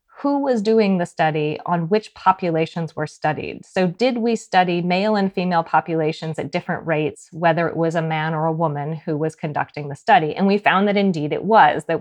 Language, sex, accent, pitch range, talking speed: English, female, American, 160-205 Hz, 210 wpm